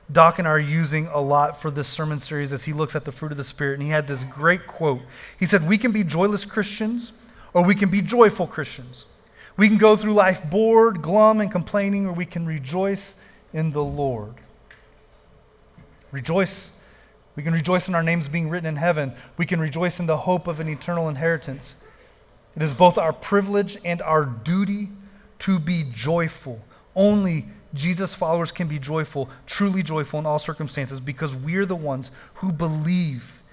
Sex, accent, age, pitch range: male, American, 30-49, 145-185 Hz